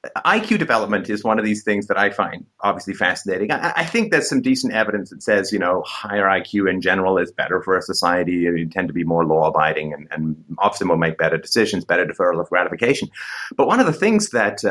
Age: 30-49